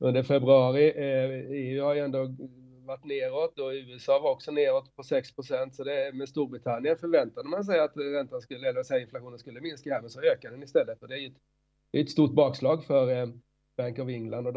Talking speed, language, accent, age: 200 wpm, Swedish, native, 30-49